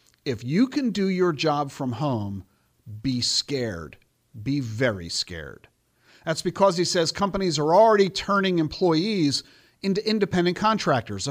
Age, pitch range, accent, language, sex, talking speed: 50-69, 120-190 Hz, American, English, male, 140 wpm